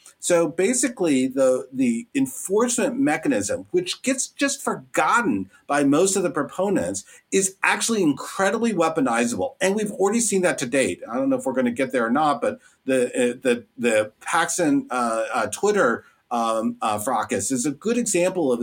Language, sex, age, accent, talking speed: English, male, 50-69, American, 170 wpm